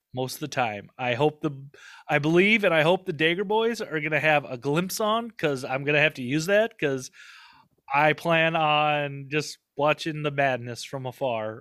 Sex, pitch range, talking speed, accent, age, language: male, 140-185 Hz, 195 wpm, American, 20-39, English